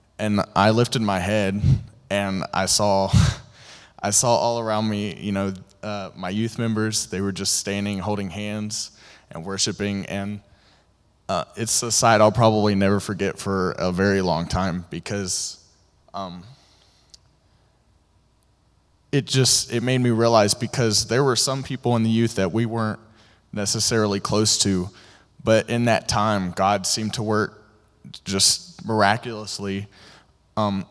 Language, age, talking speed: English, 20-39, 145 wpm